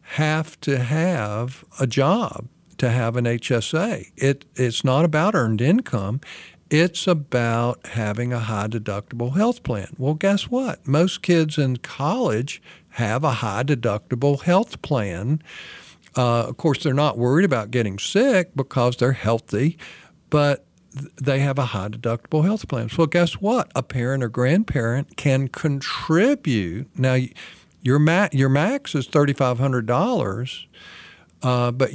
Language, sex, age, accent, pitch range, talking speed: English, male, 50-69, American, 120-155 Hz, 135 wpm